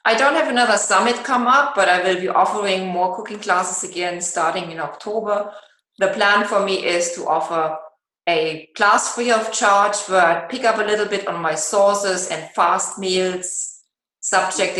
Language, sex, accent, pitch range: English, female, German, 165-205 Hz